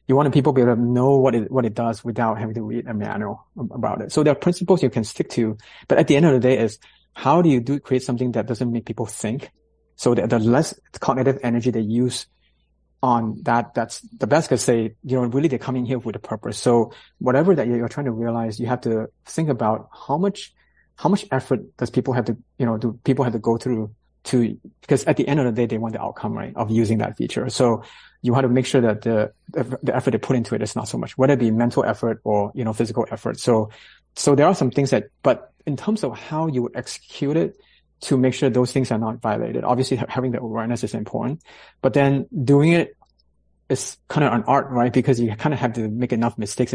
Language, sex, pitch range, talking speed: English, male, 115-130 Hz, 250 wpm